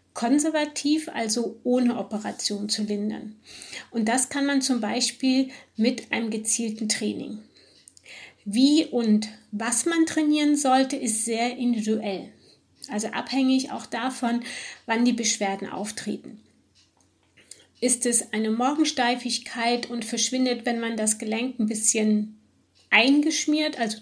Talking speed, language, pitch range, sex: 115 wpm, German, 220-265 Hz, female